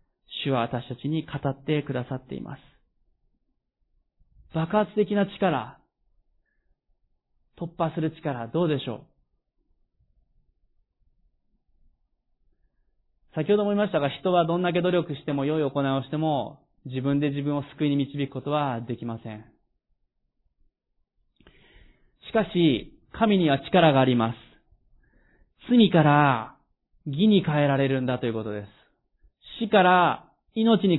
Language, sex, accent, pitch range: Japanese, male, native, 130-190 Hz